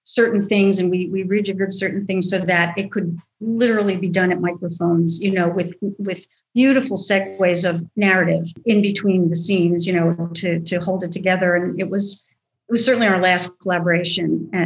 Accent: American